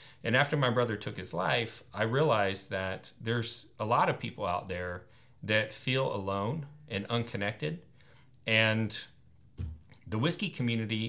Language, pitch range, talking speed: English, 100-130 Hz, 140 wpm